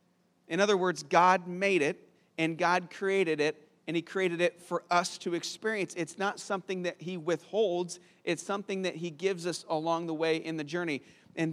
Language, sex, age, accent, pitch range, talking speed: English, male, 40-59, American, 160-185 Hz, 195 wpm